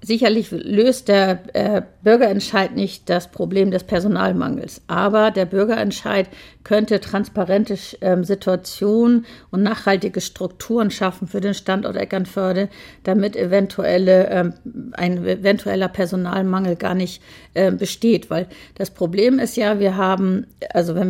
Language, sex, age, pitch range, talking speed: German, female, 50-69, 190-215 Hz, 115 wpm